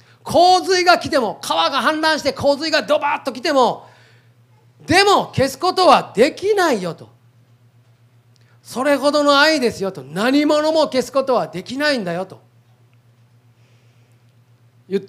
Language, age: Japanese, 40-59